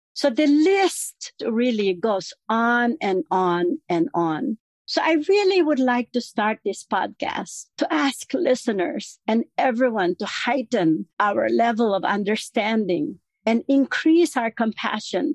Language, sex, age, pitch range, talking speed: English, female, 50-69, 190-255 Hz, 135 wpm